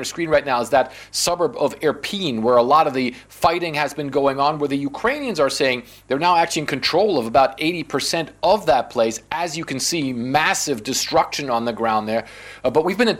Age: 40-59